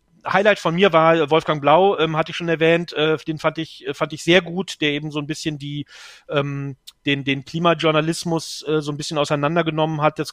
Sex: male